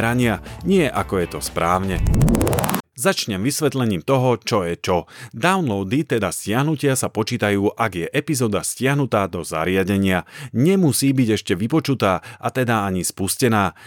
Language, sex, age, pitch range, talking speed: Slovak, male, 40-59, 100-140 Hz, 130 wpm